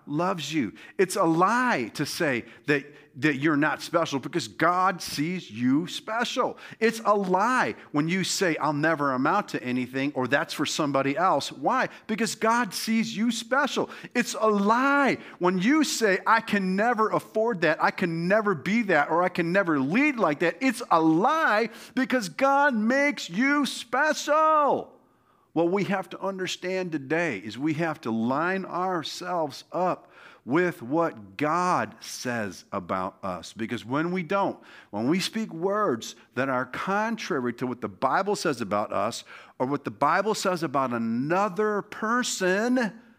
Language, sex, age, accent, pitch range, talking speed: English, male, 50-69, American, 140-220 Hz, 160 wpm